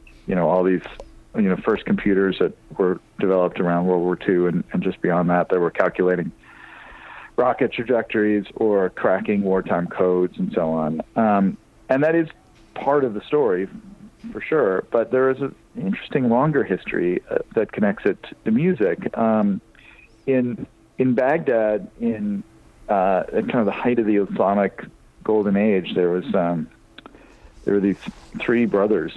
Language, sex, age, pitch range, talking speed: English, male, 40-59, 90-155 Hz, 160 wpm